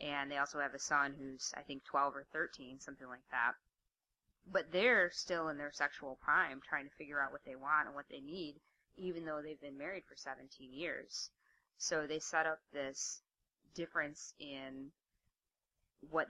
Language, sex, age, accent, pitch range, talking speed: English, female, 20-39, American, 135-155 Hz, 180 wpm